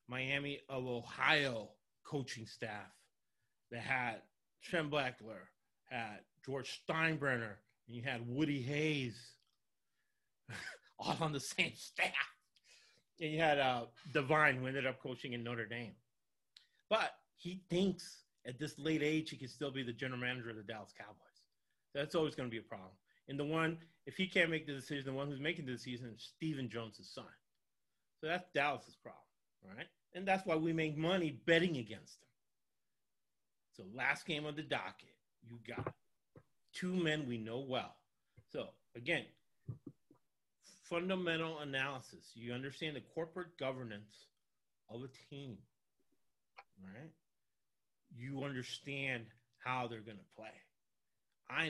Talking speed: 150 wpm